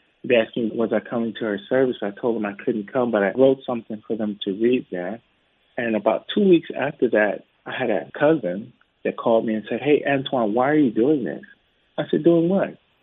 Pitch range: 115-150 Hz